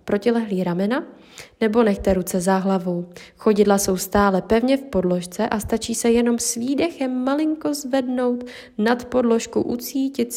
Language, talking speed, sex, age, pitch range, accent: Czech, 140 wpm, female, 20-39, 190-245 Hz, native